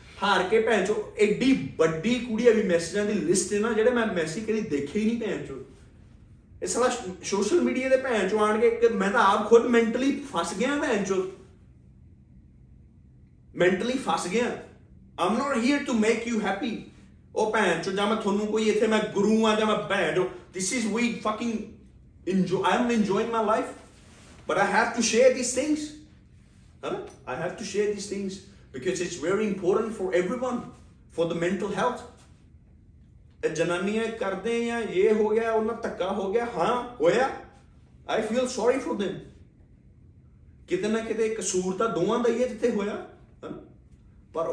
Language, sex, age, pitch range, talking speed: Punjabi, male, 30-49, 185-230 Hz, 140 wpm